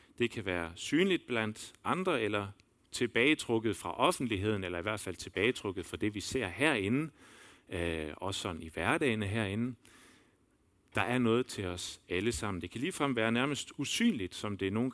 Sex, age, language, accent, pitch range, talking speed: male, 40-59, Danish, native, 100-140 Hz, 170 wpm